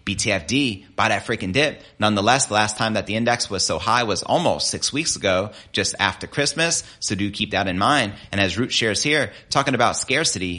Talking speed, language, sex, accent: 210 wpm, English, male, American